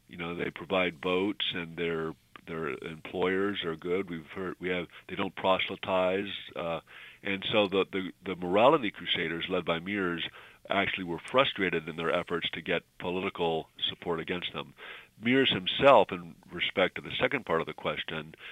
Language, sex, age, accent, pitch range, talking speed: English, male, 50-69, American, 85-95 Hz, 170 wpm